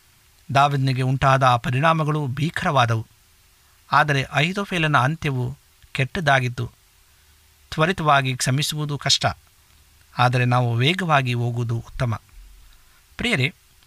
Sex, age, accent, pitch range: male, 50-69, native, 115-145 Hz